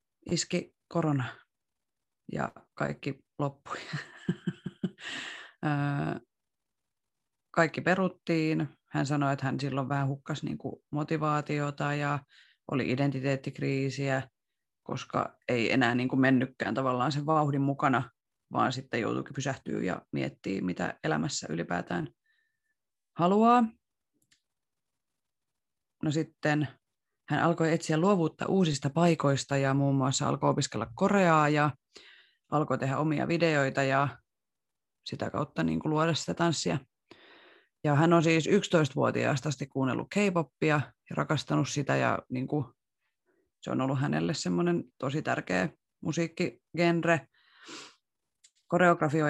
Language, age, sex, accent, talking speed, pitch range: Finnish, 30-49, female, native, 105 wpm, 135-165 Hz